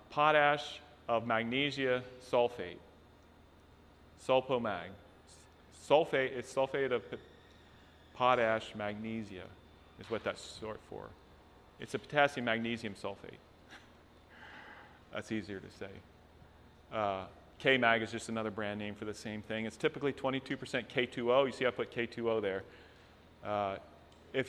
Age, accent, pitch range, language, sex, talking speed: 40-59, American, 95-120 Hz, English, male, 125 wpm